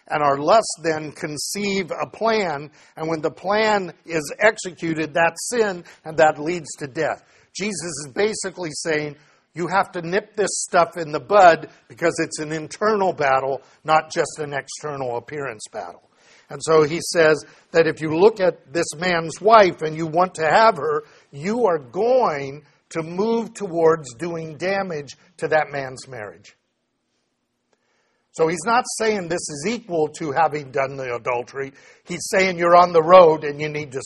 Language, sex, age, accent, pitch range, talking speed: English, male, 50-69, American, 150-185 Hz, 170 wpm